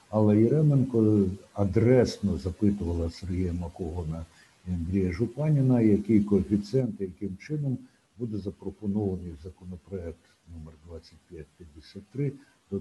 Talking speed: 95 wpm